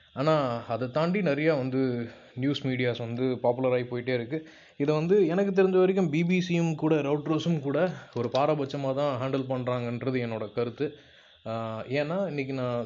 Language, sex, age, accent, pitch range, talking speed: Tamil, male, 20-39, native, 120-145 Hz, 140 wpm